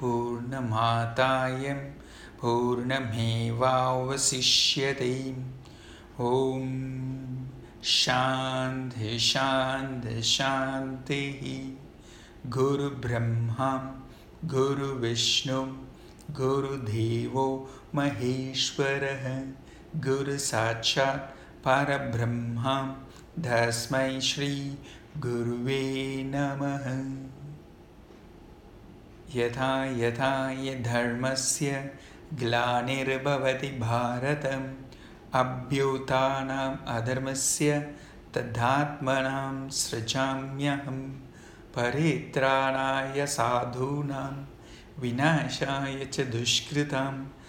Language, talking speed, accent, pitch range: English, 45 wpm, Indian, 120-135 Hz